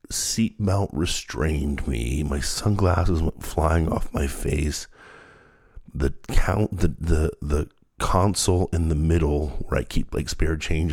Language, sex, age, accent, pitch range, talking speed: English, male, 50-69, American, 75-90 Hz, 145 wpm